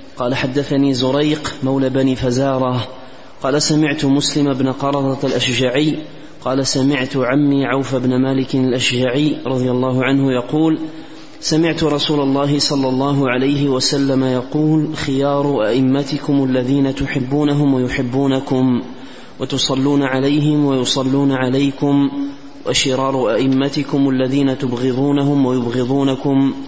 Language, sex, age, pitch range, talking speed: Arabic, male, 30-49, 130-145 Hz, 100 wpm